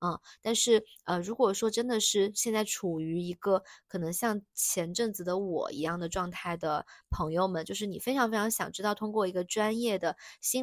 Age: 20-39